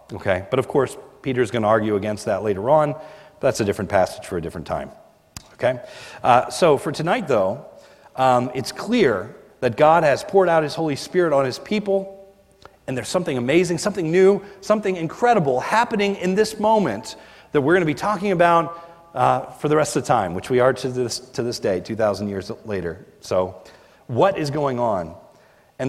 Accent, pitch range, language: American, 115-180 Hz, English